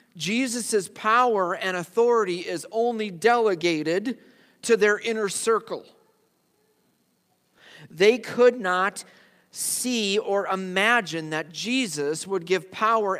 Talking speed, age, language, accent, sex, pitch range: 100 wpm, 40-59, English, American, male, 125-195 Hz